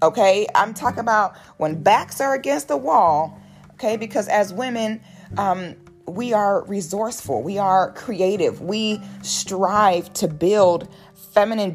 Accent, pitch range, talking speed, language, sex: American, 150-205 Hz, 135 wpm, English, female